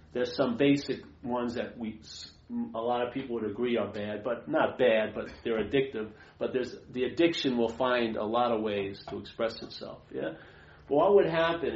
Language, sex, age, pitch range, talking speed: English, male, 40-59, 105-120 Hz, 195 wpm